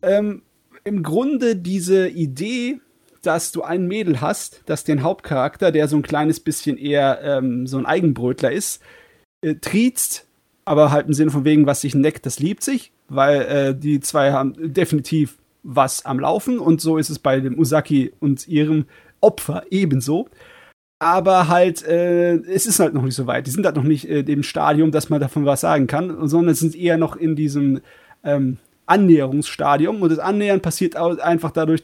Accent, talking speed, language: German, 180 wpm, German